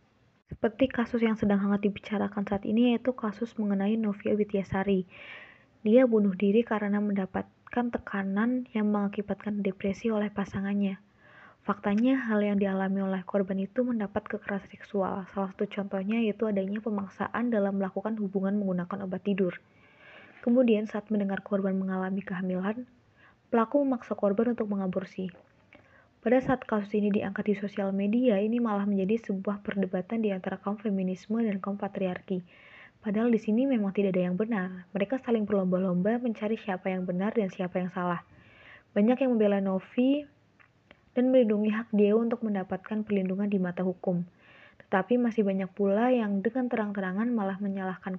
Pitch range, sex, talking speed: 195-225 Hz, female, 150 wpm